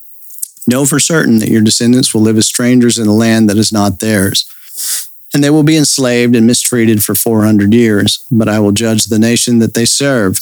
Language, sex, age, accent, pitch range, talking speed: English, male, 50-69, American, 105-120 Hz, 205 wpm